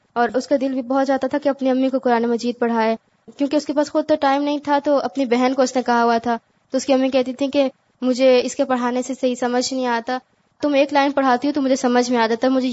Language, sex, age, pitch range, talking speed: Urdu, female, 20-39, 240-280 Hz, 290 wpm